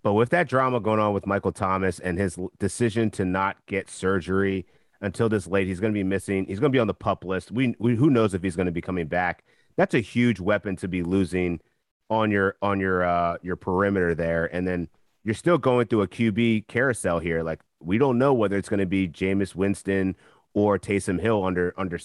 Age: 30-49